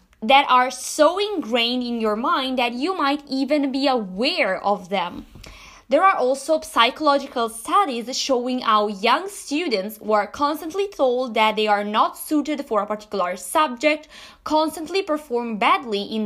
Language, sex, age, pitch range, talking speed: English, female, 20-39, 230-310 Hz, 150 wpm